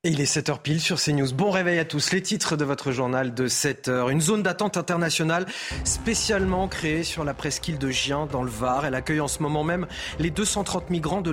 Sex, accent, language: male, French, French